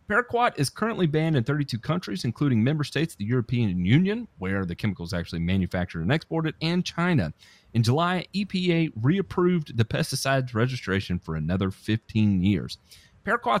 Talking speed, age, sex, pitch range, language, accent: 160 wpm, 40-59, male, 95-150 Hz, English, American